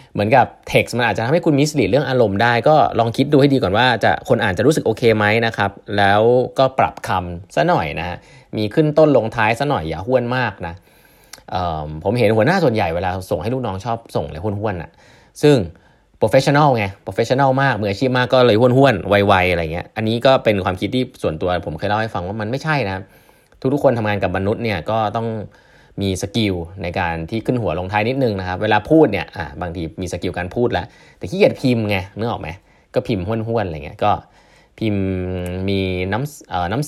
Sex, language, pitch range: male, Thai, 90-125 Hz